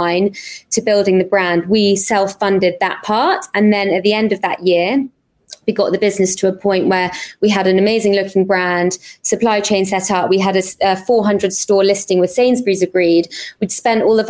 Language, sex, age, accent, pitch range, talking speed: English, female, 20-39, British, 185-210 Hz, 200 wpm